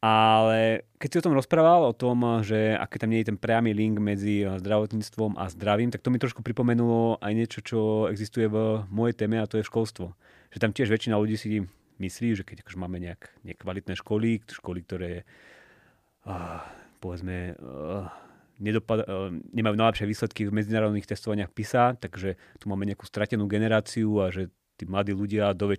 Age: 30-49